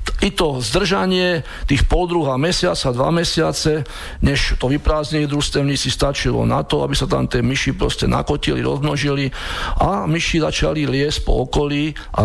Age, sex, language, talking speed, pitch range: 50-69, male, Slovak, 155 wpm, 125-155 Hz